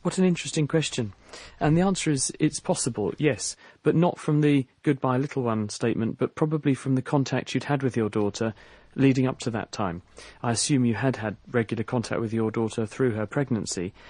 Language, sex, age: English, male, 40-59